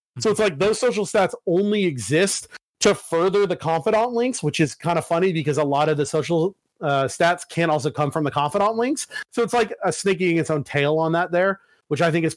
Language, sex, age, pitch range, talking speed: English, male, 30-49, 150-195 Hz, 235 wpm